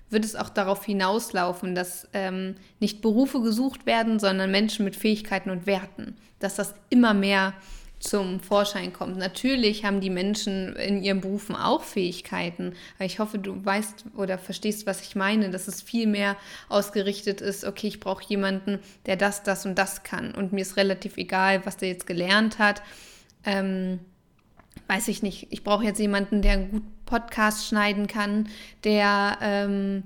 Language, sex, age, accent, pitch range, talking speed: German, female, 20-39, German, 195-215 Hz, 170 wpm